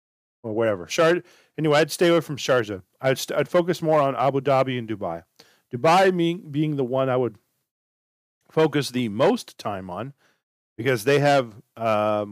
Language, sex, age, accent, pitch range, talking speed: English, male, 40-59, American, 110-150 Hz, 170 wpm